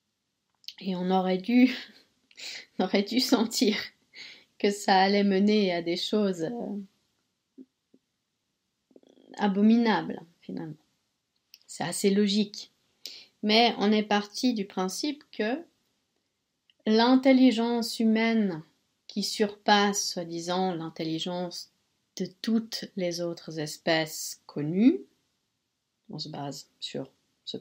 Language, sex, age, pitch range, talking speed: French, female, 30-49, 200-250 Hz, 95 wpm